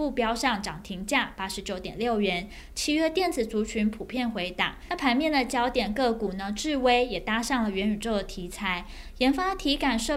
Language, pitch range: Chinese, 205-260 Hz